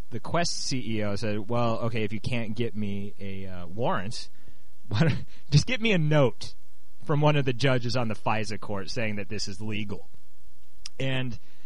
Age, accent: 30-49, American